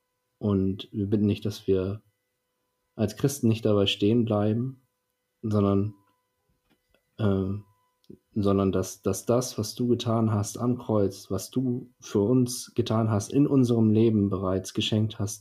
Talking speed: 140 wpm